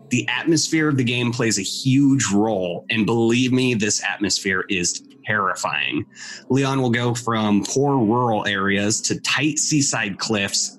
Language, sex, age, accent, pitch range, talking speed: English, male, 30-49, American, 110-165 Hz, 150 wpm